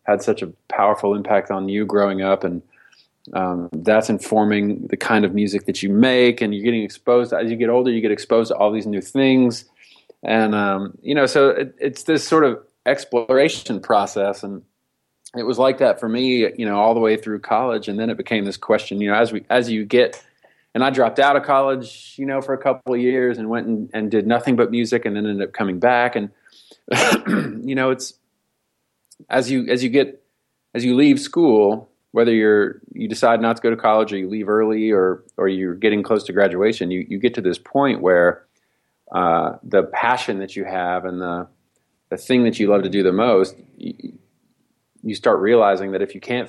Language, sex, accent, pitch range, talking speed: English, male, American, 100-120 Hz, 215 wpm